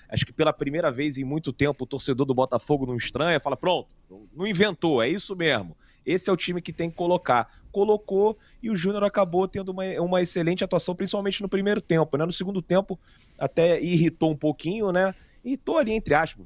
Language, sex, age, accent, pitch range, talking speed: Portuguese, male, 30-49, Brazilian, 125-185 Hz, 210 wpm